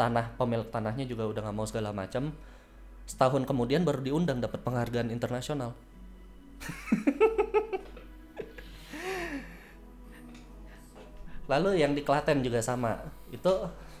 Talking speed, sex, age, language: 100 wpm, male, 20-39, Indonesian